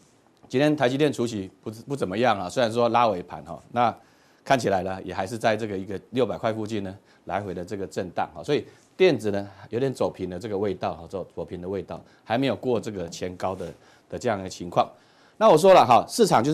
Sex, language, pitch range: male, Chinese, 100-135 Hz